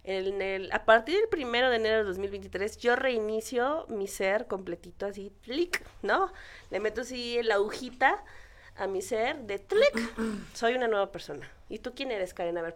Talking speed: 185 wpm